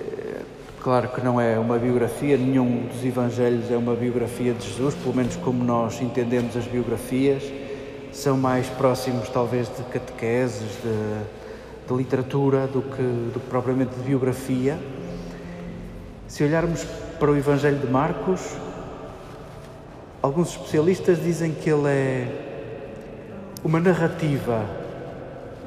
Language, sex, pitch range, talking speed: Portuguese, male, 125-150 Hz, 120 wpm